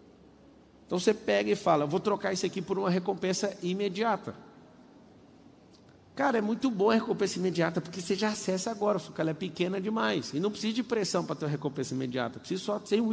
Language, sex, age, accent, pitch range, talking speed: Portuguese, male, 50-69, Brazilian, 150-195 Hz, 205 wpm